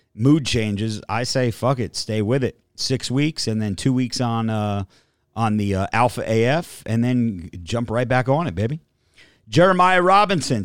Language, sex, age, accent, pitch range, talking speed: English, male, 40-59, American, 110-150 Hz, 180 wpm